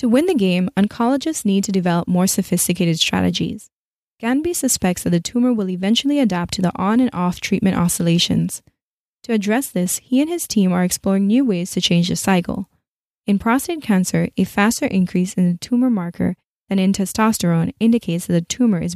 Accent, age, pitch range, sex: American, 20-39, 175-220 Hz, female